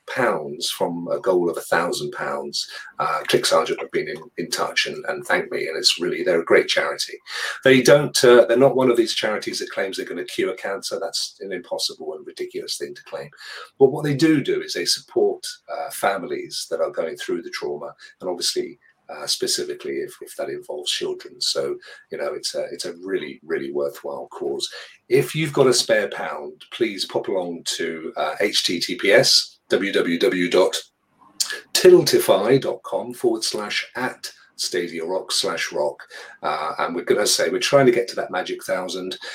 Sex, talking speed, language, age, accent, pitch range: male, 180 wpm, English, 40-59, British, 345-410 Hz